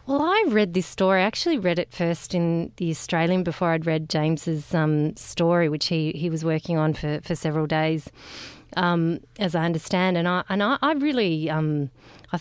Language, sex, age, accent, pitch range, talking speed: English, female, 30-49, Australian, 160-195 Hz, 200 wpm